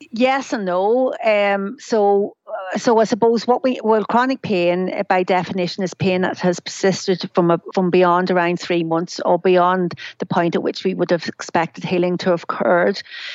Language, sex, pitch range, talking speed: English, female, 185-215 Hz, 190 wpm